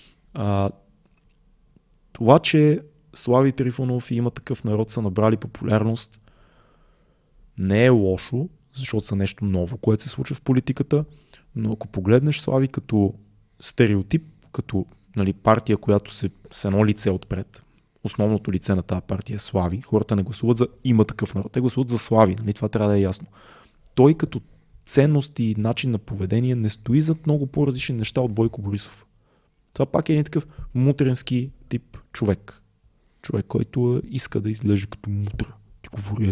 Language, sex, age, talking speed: Bulgarian, male, 20-39, 160 wpm